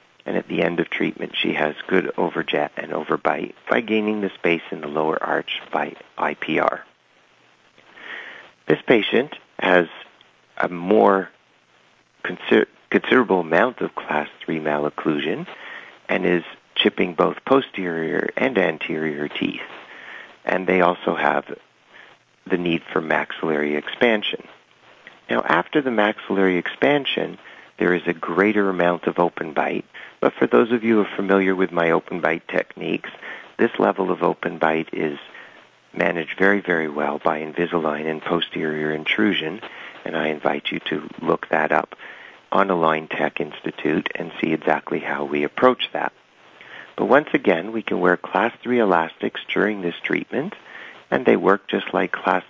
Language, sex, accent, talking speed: English, male, American, 145 wpm